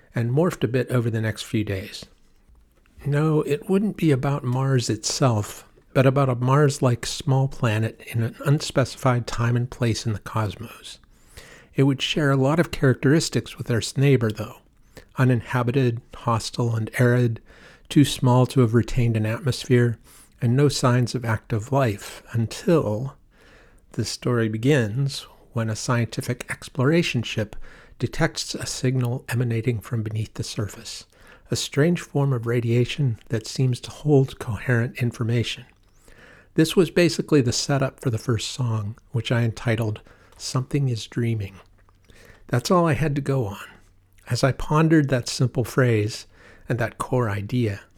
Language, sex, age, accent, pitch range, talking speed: English, male, 50-69, American, 110-135 Hz, 150 wpm